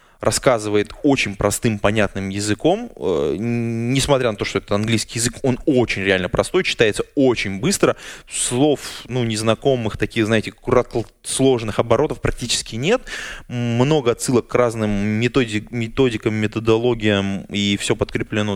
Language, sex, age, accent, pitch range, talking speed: Russian, male, 20-39, native, 100-120 Hz, 120 wpm